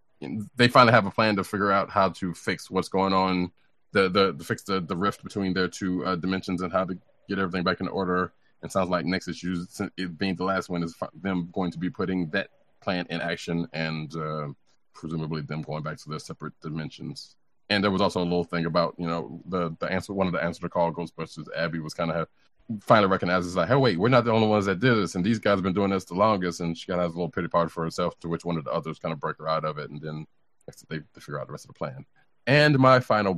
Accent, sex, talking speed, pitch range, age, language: American, male, 260 wpm, 85-100 Hz, 30-49, English